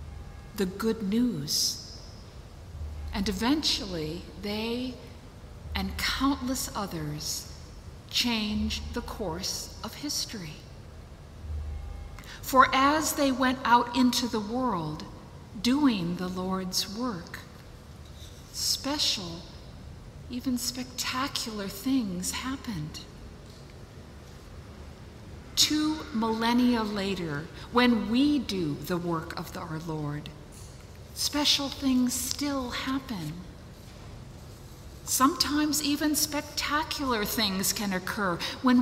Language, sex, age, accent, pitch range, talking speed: English, female, 50-69, American, 180-265 Hz, 85 wpm